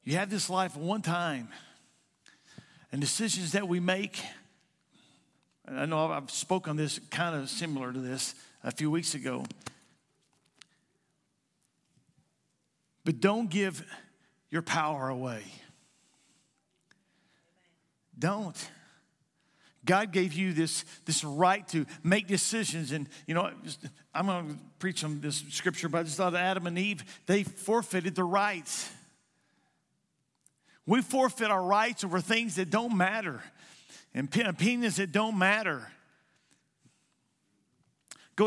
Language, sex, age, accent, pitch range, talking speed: English, male, 50-69, American, 155-195 Hz, 125 wpm